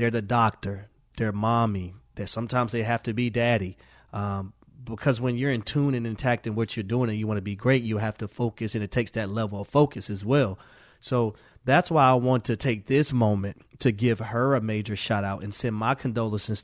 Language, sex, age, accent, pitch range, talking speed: English, male, 30-49, American, 115-135 Hz, 220 wpm